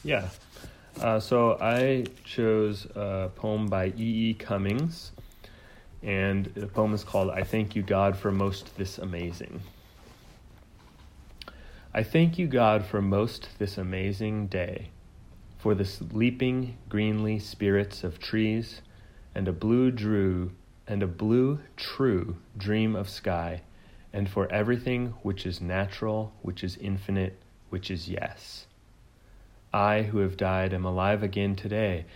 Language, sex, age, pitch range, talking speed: English, male, 30-49, 95-110 Hz, 130 wpm